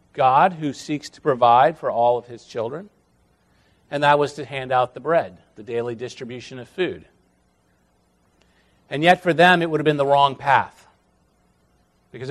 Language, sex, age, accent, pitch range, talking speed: English, male, 40-59, American, 120-180 Hz, 170 wpm